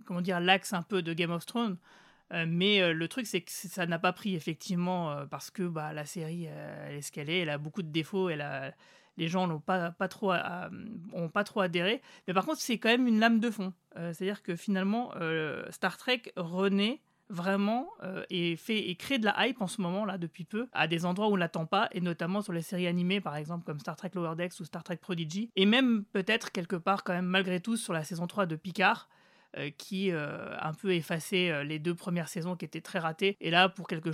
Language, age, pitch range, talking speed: French, 30-49, 170-200 Hz, 245 wpm